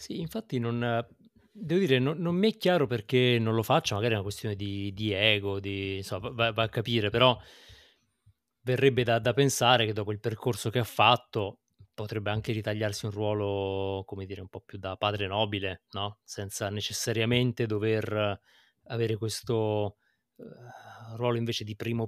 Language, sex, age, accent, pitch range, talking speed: Italian, male, 30-49, native, 105-125 Hz, 170 wpm